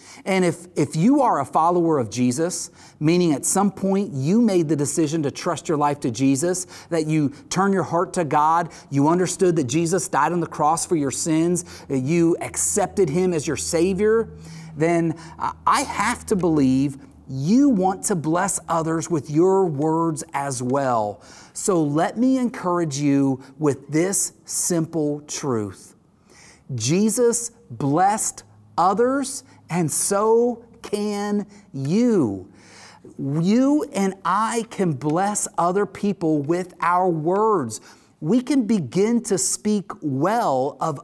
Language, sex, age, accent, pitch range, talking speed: English, male, 40-59, American, 150-205 Hz, 140 wpm